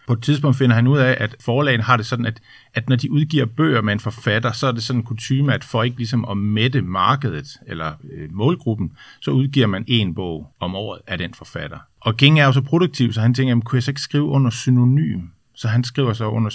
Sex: male